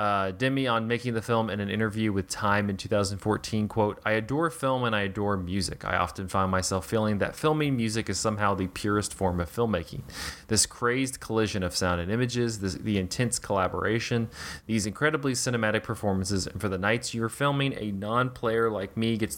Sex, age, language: male, 20-39, English